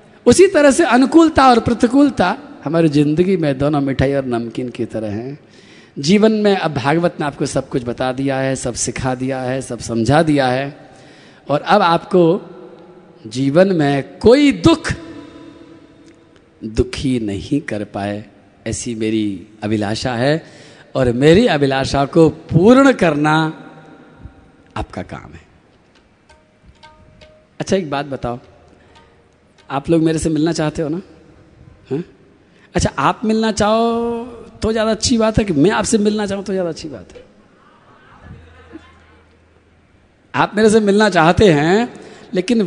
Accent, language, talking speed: native, Hindi, 135 wpm